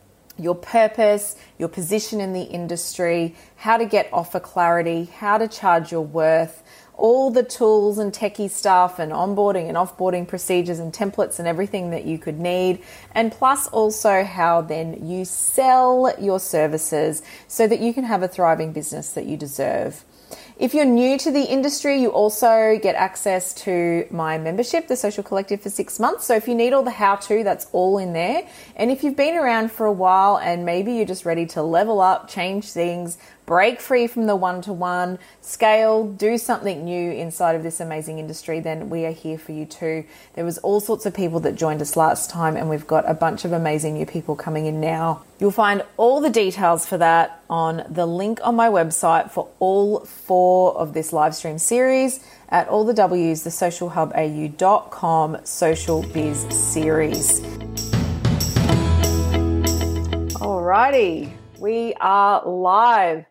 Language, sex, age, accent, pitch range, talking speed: English, female, 30-49, Australian, 165-215 Hz, 175 wpm